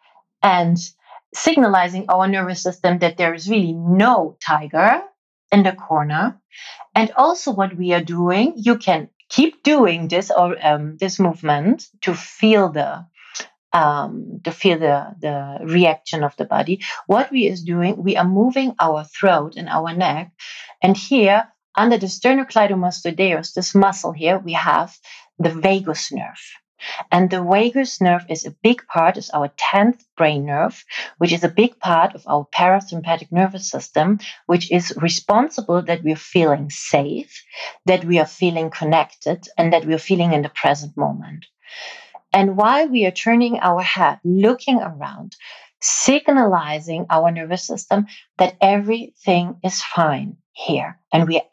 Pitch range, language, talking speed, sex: 165-210 Hz, English, 150 wpm, female